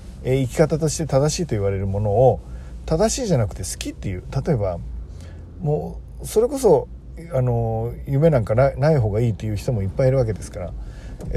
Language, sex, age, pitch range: Japanese, male, 40-59, 100-150 Hz